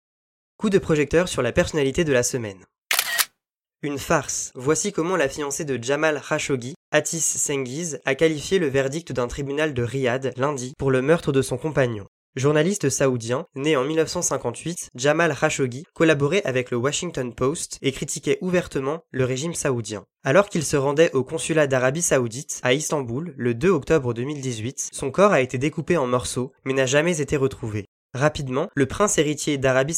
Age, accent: 20-39, French